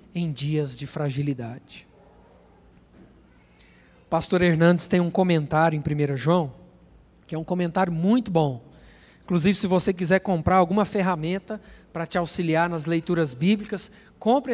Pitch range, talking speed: 160-215 Hz, 135 wpm